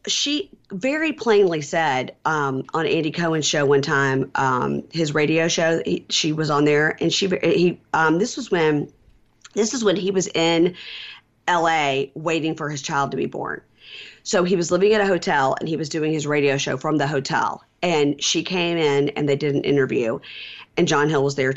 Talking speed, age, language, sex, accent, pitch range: 200 wpm, 40-59, English, female, American, 150-205 Hz